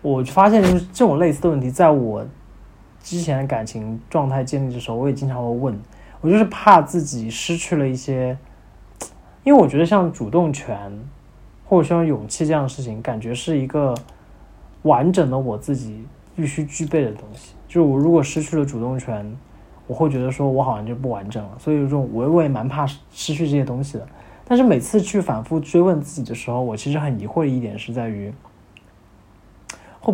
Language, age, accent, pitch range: Chinese, 20-39, native, 110-150 Hz